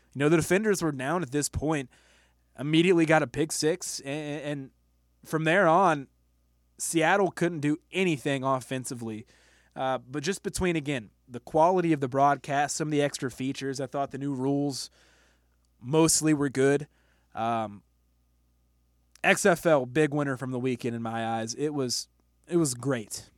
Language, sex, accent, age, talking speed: English, male, American, 20-39, 160 wpm